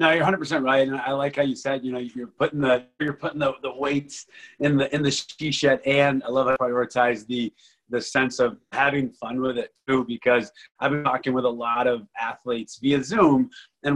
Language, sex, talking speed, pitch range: English, male, 230 wpm, 120-145 Hz